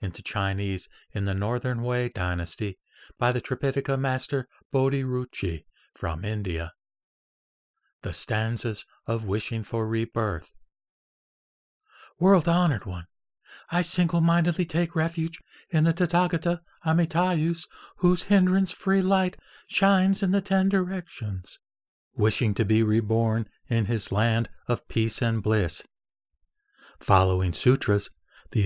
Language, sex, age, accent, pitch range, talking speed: English, male, 60-79, American, 105-155 Hz, 115 wpm